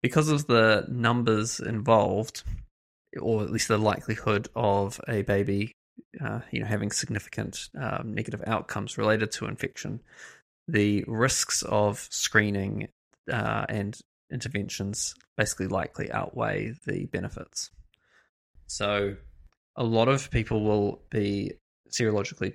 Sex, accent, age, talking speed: male, Australian, 20-39, 115 wpm